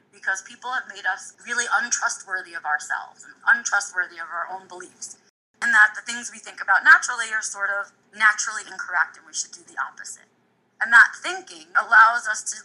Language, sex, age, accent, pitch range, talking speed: English, female, 20-39, American, 195-235 Hz, 190 wpm